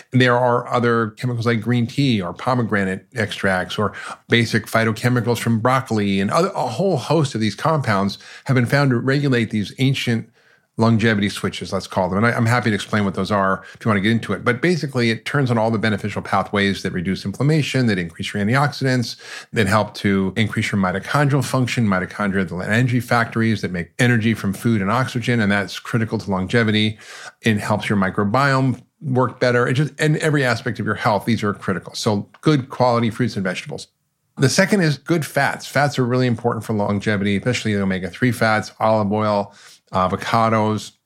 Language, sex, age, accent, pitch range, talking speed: English, male, 40-59, American, 105-130 Hz, 190 wpm